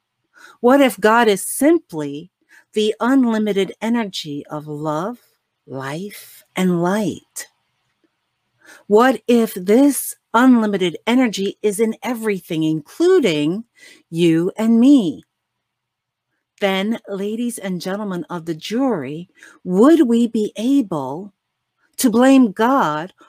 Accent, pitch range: American, 170-240 Hz